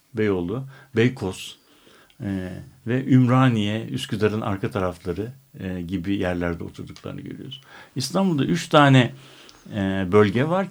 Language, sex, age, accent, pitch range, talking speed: Turkish, male, 60-79, native, 95-135 Hz, 105 wpm